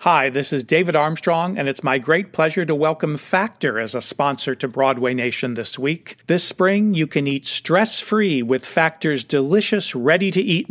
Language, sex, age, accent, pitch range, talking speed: English, male, 40-59, American, 140-185 Hz, 175 wpm